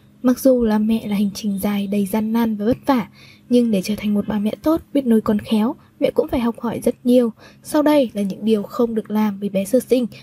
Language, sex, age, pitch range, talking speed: Vietnamese, female, 20-39, 215-260 Hz, 265 wpm